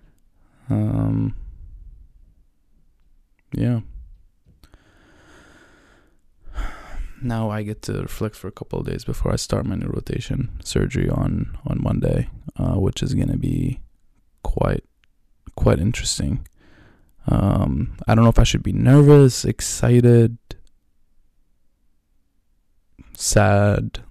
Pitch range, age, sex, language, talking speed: 90-120 Hz, 20-39, male, English, 105 wpm